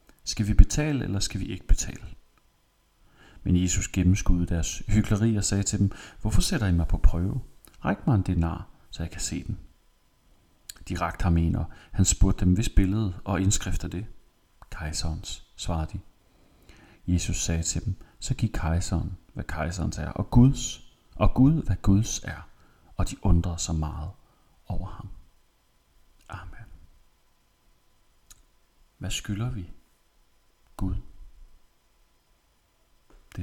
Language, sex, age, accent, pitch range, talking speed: Danish, male, 40-59, native, 85-105 Hz, 140 wpm